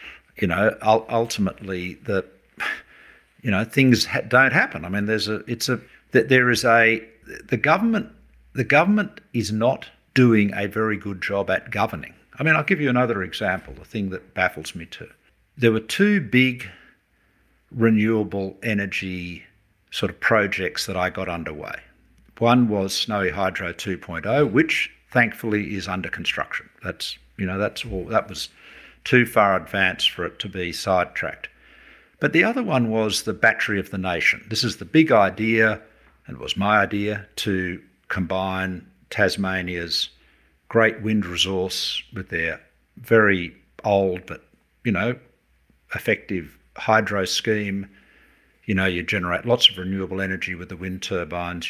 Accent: Australian